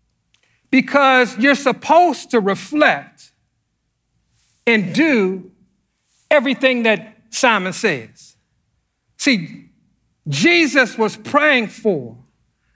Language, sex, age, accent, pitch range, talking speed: English, male, 50-69, American, 170-280 Hz, 75 wpm